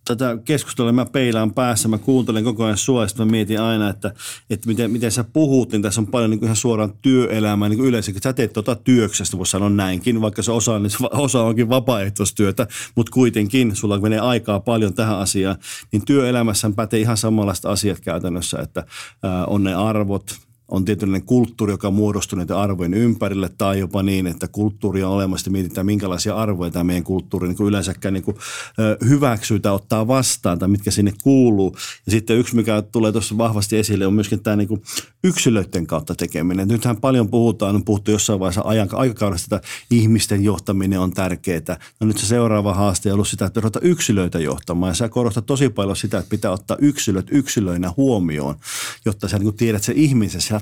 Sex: male